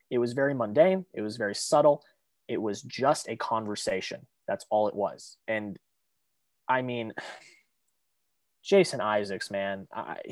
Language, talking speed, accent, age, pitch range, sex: English, 140 wpm, American, 20-39, 110-160 Hz, male